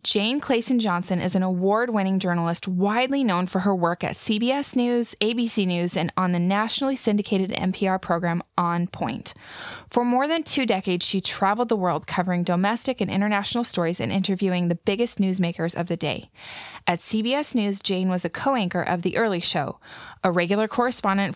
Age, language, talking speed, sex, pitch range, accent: 20-39, English, 175 wpm, female, 175-220 Hz, American